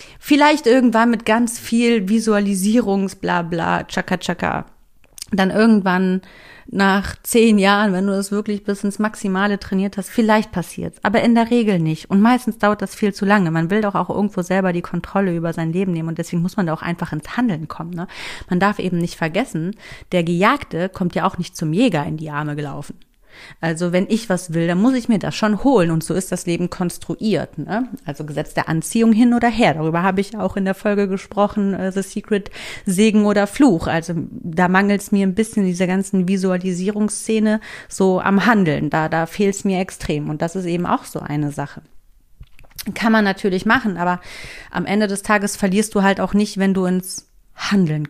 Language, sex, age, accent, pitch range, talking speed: German, female, 30-49, German, 175-210 Hz, 200 wpm